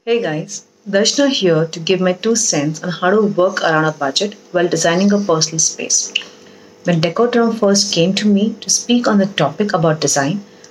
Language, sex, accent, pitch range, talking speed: English, female, Indian, 175-225 Hz, 190 wpm